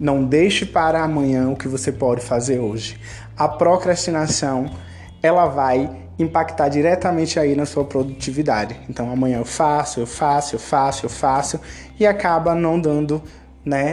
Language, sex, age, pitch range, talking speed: Portuguese, male, 20-39, 135-180 Hz, 160 wpm